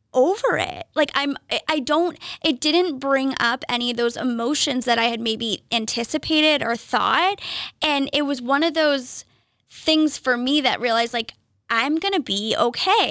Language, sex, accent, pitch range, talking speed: English, female, American, 235-290 Hz, 175 wpm